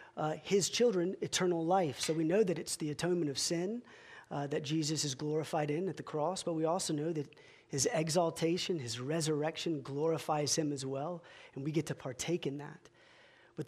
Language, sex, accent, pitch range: English, male, American, 150-200 Hz